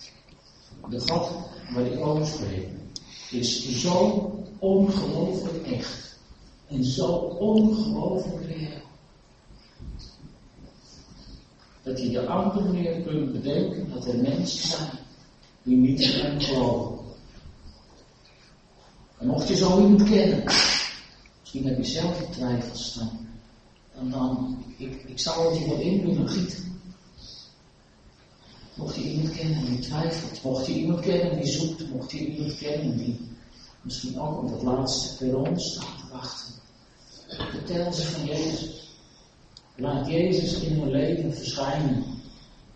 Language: Dutch